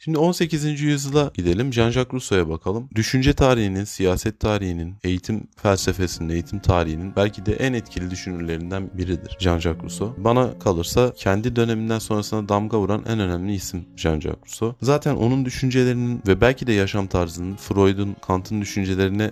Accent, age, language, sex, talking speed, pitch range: native, 30-49, Turkish, male, 145 wpm, 95-125 Hz